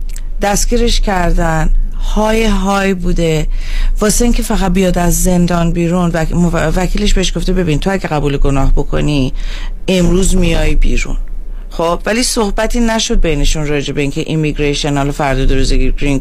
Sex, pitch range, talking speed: female, 145-180 Hz, 135 wpm